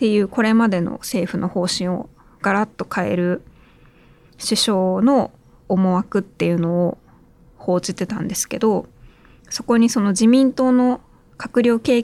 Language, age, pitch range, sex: Japanese, 20-39, 185-235 Hz, female